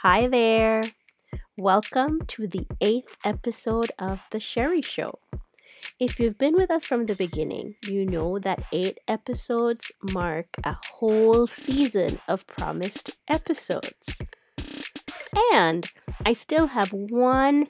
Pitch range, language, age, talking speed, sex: 190-260 Hz, English, 30-49, 120 wpm, female